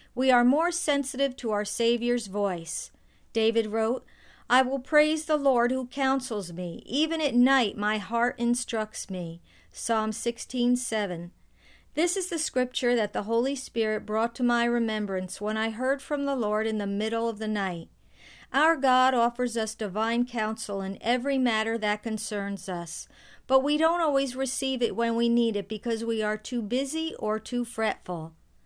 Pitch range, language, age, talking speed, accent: 215-255 Hz, English, 50-69, 170 wpm, American